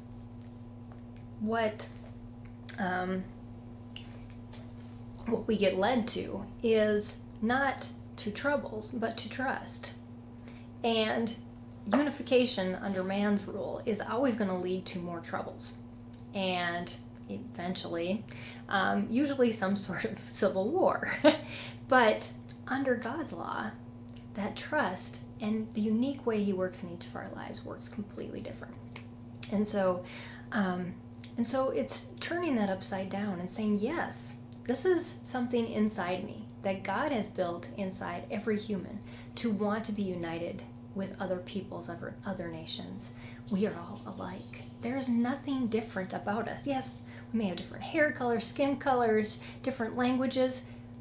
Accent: American